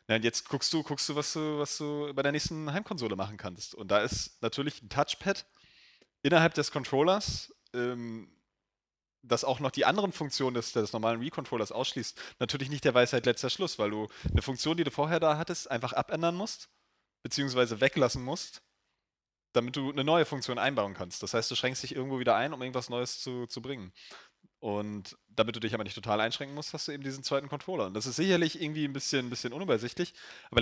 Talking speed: 205 wpm